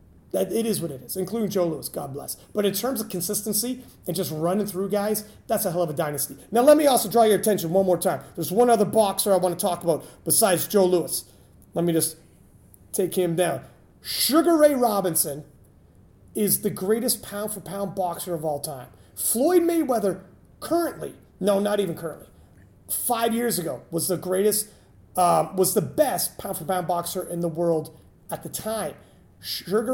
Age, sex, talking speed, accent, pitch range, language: 30-49, male, 180 wpm, American, 170-225 Hz, English